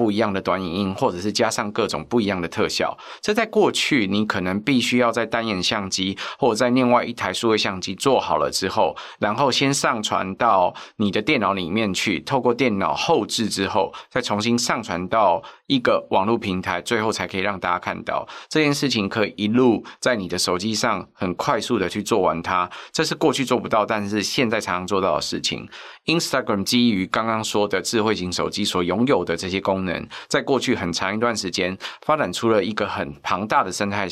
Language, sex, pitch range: Chinese, male, 95-120 Hz